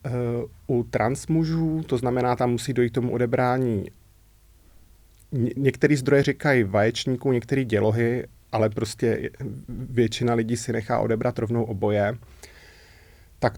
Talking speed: 120 wpm